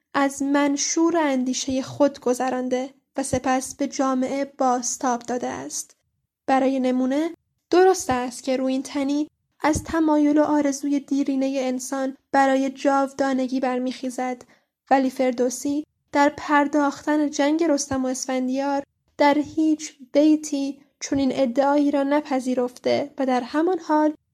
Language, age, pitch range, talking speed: Persian, 10-29, 260-290 Hz, 120 wpm